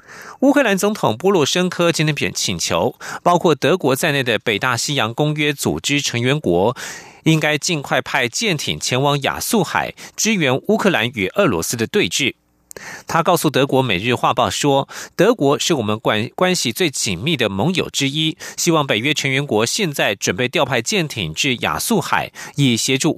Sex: male